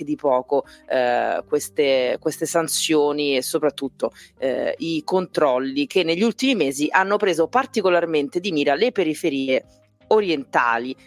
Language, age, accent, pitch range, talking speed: Italian, 30-49, native, 145-180 Hz, 125 wpm